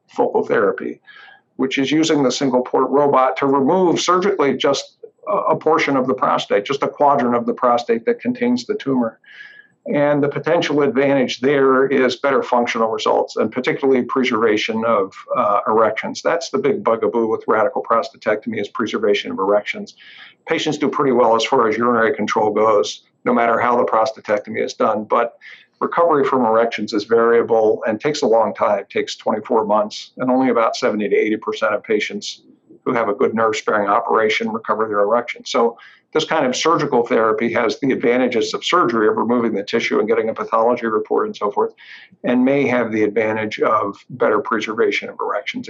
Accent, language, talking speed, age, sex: American, English, 175 wpm, 50-69, male